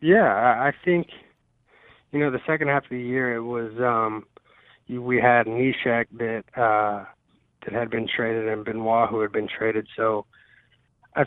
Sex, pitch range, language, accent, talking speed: male, 110-130 Hz, English, American, 165 wpm